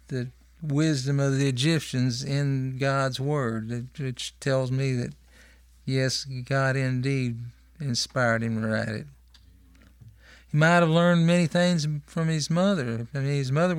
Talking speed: 145 wpm